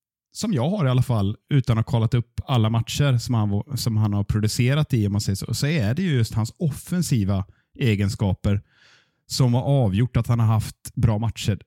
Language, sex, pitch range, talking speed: Swedish, male, 110-135 Hz, 210 wpm